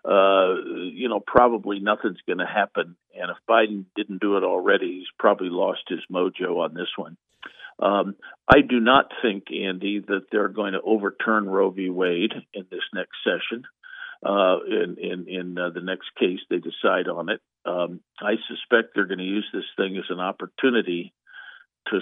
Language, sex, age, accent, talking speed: English, male, 50-69, American, 175 wpm